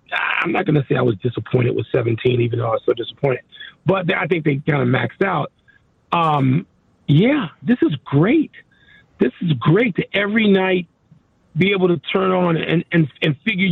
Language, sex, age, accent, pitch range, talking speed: English, male, 40-59, American, 165-210 Hz, 190 wpm